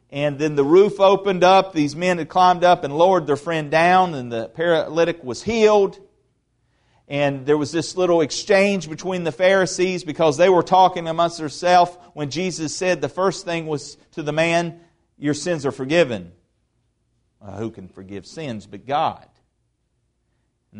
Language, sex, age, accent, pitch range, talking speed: English, male, 40-59, American, 130-195 Hz, 165 wpm